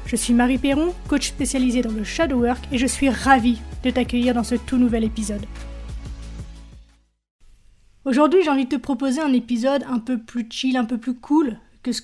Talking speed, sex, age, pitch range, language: 195 wpm, female, 30-49, 235-280 Hz, French